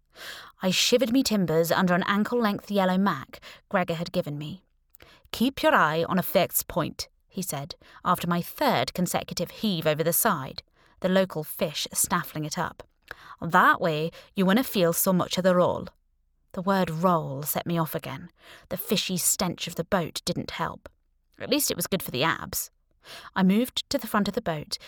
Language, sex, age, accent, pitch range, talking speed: English, female, 20-39, British, 165-205 Hz, 190 wpm